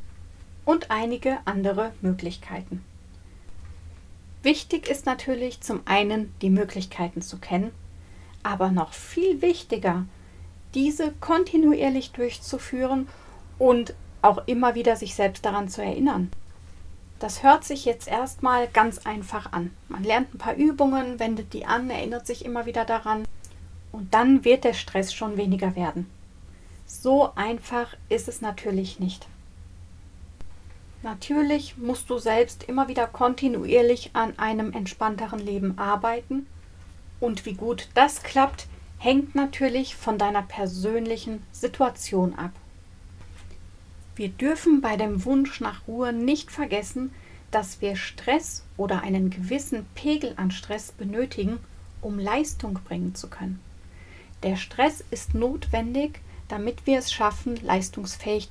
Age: 40-59